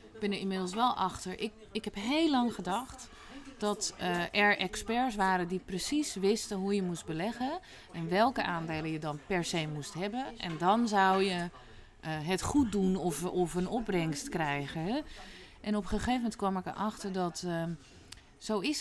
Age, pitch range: 30-49, 170-230 Hz